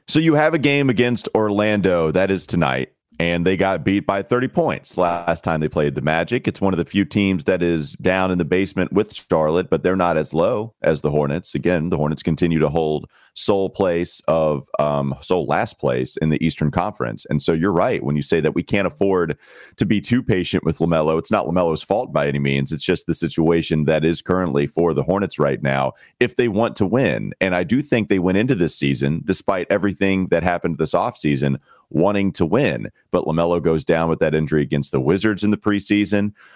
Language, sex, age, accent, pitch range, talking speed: English, male, 30-49, American, 80-105 Hz, 220 wpm